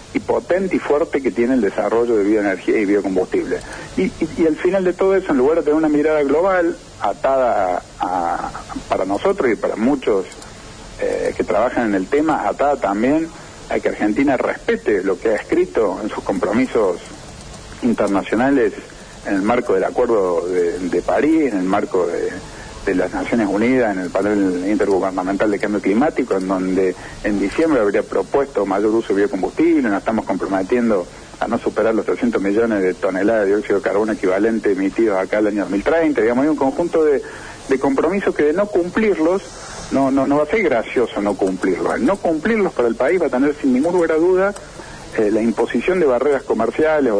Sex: male